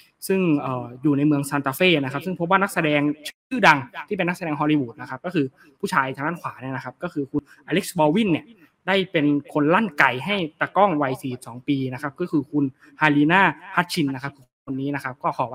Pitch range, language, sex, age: 140-170 Hz, Thai, male, 20-39